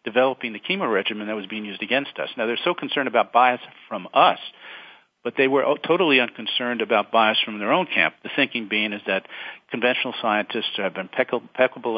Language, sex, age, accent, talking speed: English, male, 50-69, American, 190 wpm